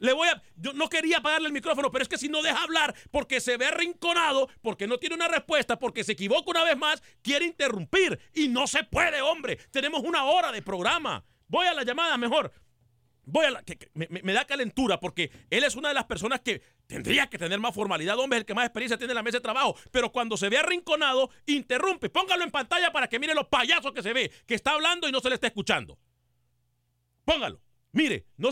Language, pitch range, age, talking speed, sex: Spanish, 195-290 Hz, 40-59, 235 wpm, male